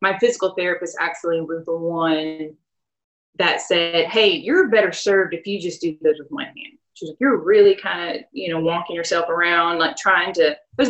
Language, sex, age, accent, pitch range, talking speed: English, female, 20-39, American, 175-250 Hz, 210 wpm